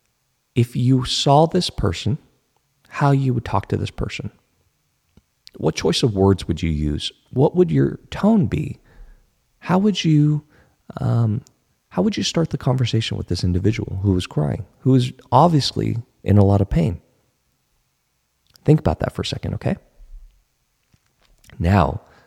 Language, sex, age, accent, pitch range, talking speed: English, male, 40-59, American, 100-135 Hz, 150 wpm